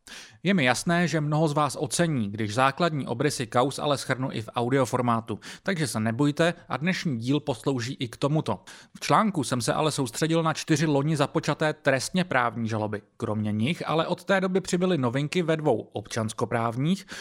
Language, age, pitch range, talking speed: Czech, 30-49, 120-170 Hz, 180 wpm